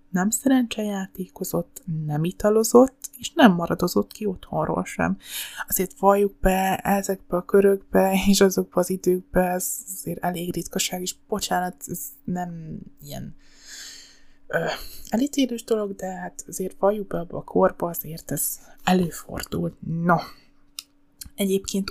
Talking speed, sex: 125 wpm, female